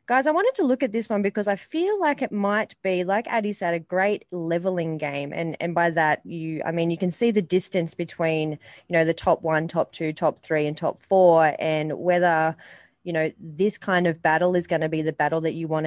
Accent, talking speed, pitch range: Australian, 240 wpm, 160-195 Hz